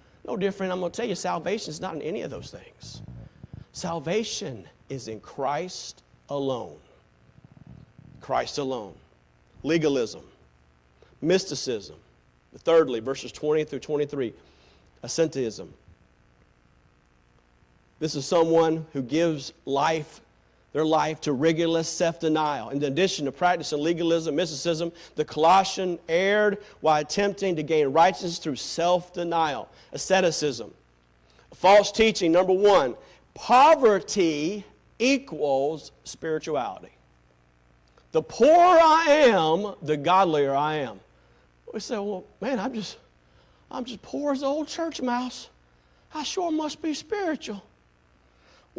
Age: 40-59